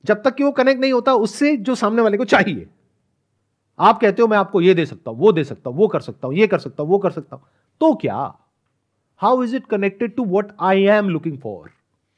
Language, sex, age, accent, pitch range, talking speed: Hindi, male, 40-59, native, 130-205 Hz, 245 wpm